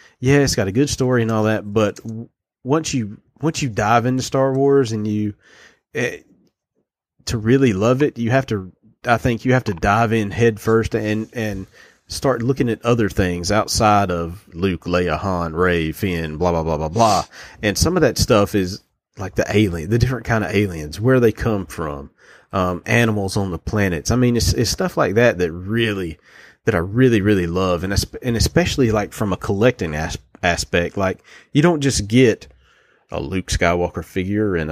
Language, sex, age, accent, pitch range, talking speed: English, male, 30-49, American, 95-130 Hz, 195 wpm